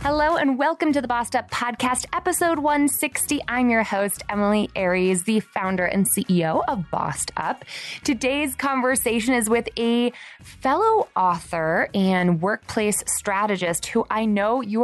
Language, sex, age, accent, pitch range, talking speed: English, female, 20-39, American, 175-240 Hz, 145 wpm